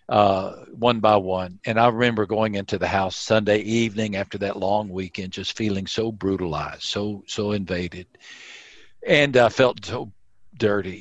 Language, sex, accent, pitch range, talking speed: English, male, American, 105-130 Hz, 160 wpm